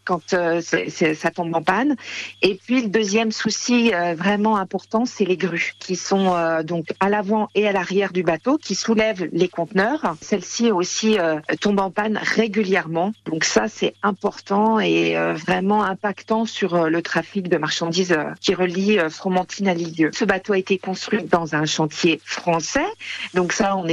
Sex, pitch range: female, 130-185 Hz